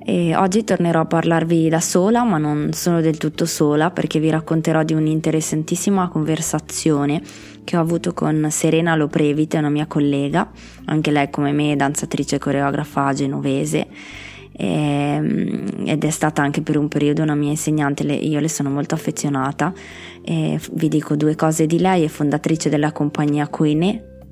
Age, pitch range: 20-39, 145-160 Hz